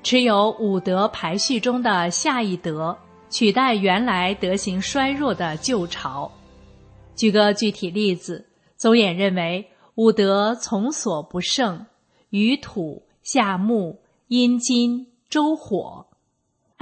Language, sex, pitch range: Chinese, female, 185-240 Hz